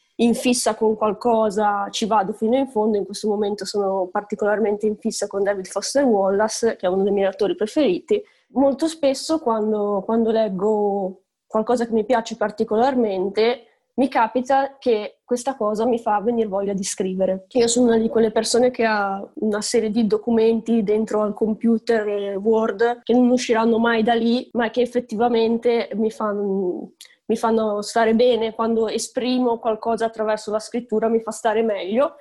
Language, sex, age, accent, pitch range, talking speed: Italian, female, 20-39, native, 205-235 Hz, 165 wpm